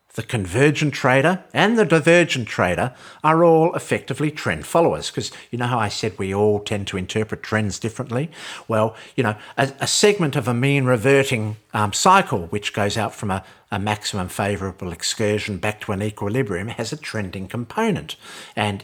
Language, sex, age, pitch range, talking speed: English, male, 50-69, 105-150 Hz, 175 wpm